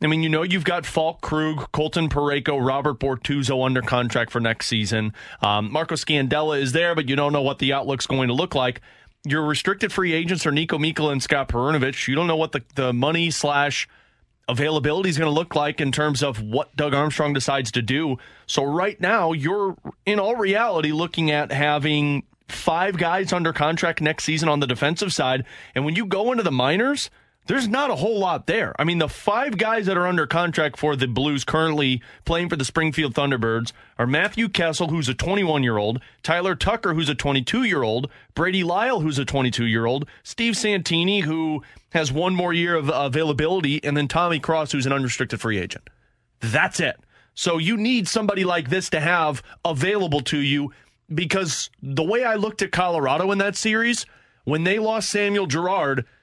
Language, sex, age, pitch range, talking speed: English, male, 30-49, 140-180 Hz, 190 wpm